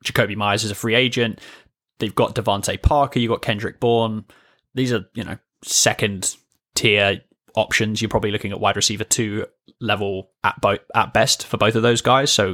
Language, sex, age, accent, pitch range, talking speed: English, male, 10-29, British, 100-115 Hz, 175 wpm